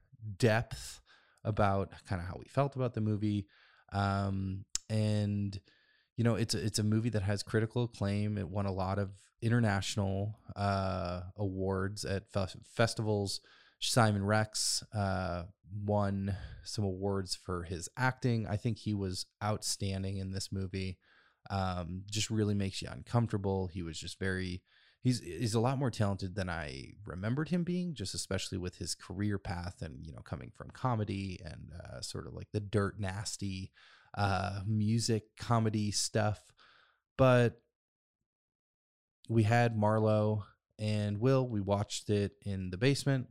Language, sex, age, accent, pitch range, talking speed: English, male, 20-39, American, 95-115 Hz, 150 wpm